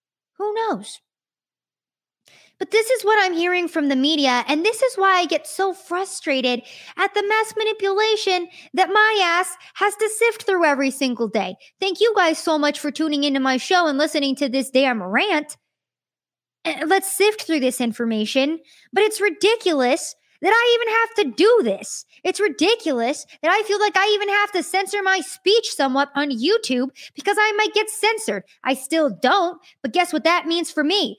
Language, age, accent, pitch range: English, 20-39, American, 275-395 Hz